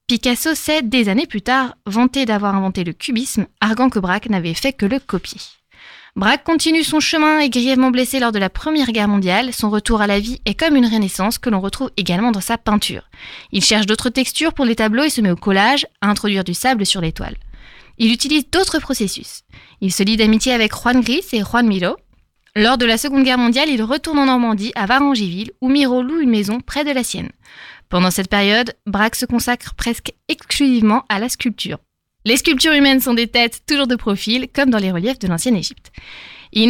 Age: 20-39